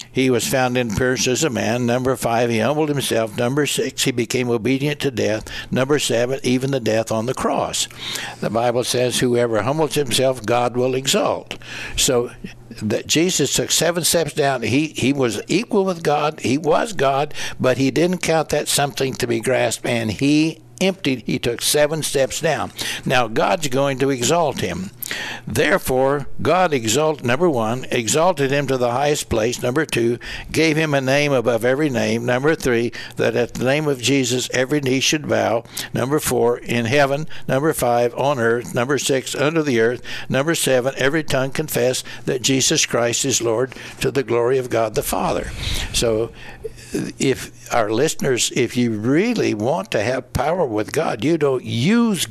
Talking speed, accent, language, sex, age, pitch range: 175 wpm, American, English, male, 60-79, 120-145 Hz